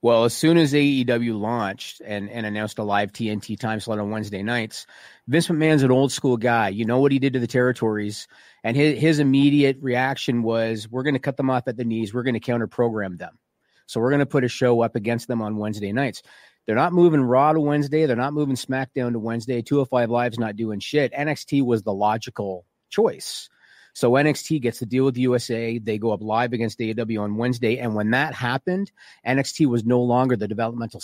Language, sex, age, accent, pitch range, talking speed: English, male, 40-59, American, 115-140 Hz, 220 wpm